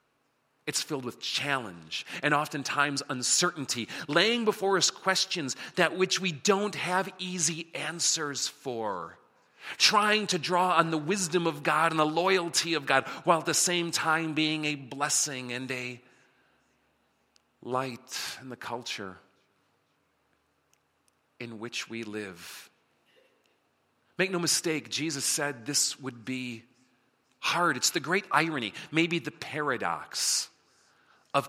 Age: 40-59